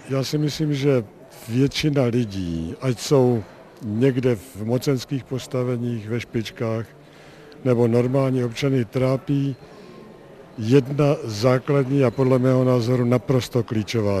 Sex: male